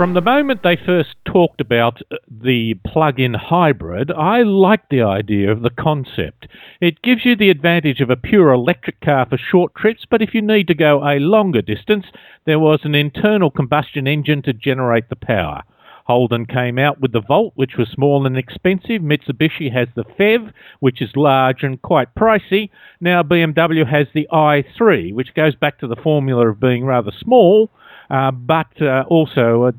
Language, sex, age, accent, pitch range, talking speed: English, male, 50-69, Australian, 130-175 Hz, 180 wpm